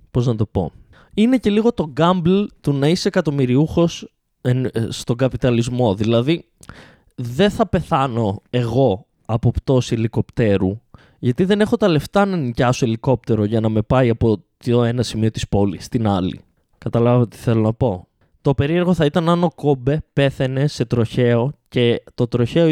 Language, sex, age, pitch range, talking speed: Greek, male, 20-39, 115-170 Hz, 155 wpm